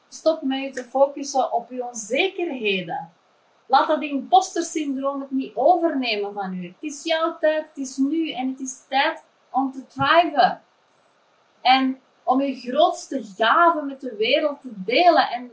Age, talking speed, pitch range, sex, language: 30-49, 160 wpm, 225-295 Hz, female, Dutch